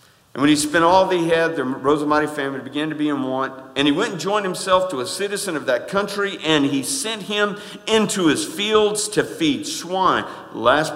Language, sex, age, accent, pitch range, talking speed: English, male, 50-69, American, 145-200 Hz, 225 wpm